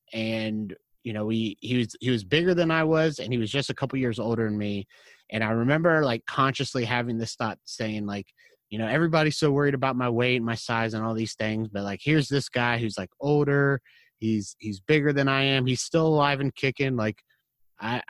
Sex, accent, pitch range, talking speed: male, American, 110-125 Hz, 220 wpm